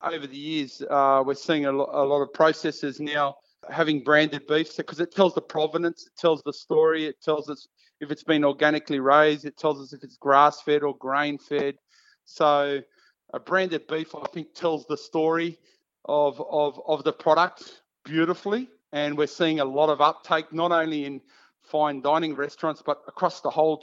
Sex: male